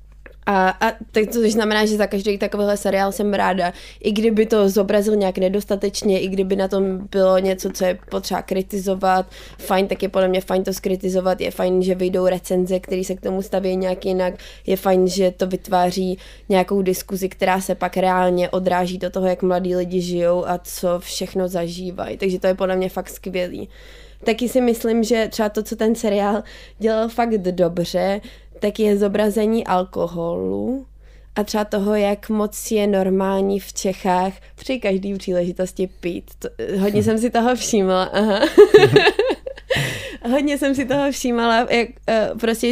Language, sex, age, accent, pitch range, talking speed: Czech, female, 20-39, native, 185-215 Hz, 165 wpm